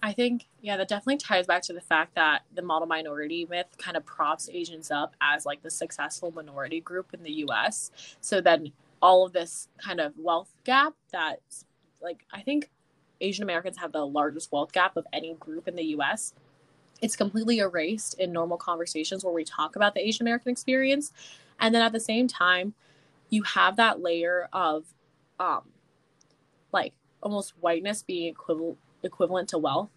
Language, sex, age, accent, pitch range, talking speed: English, female, 20-39, American, 155-200 Hz, 180 wpm